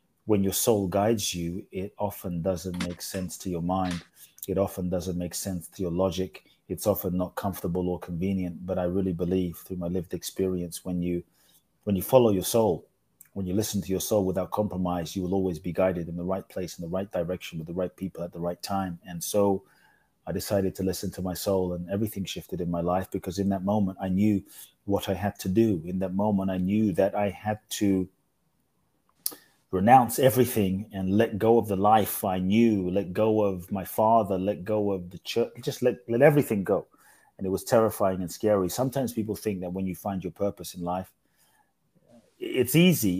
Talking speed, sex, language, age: 205 wpm, male, English, 30-49